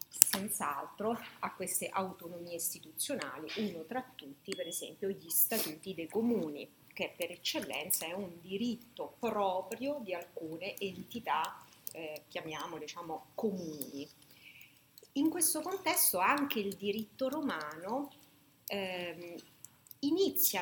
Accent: native